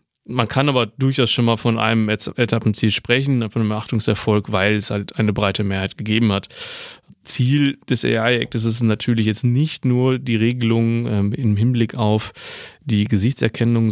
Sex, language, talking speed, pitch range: male, German, 170 wpm, 105-120 Hz